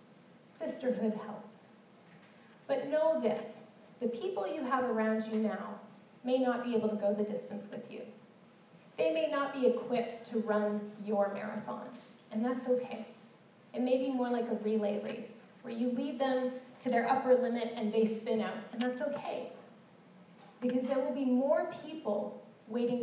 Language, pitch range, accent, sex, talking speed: English, 210-250 Hz, American, female, 165 wpm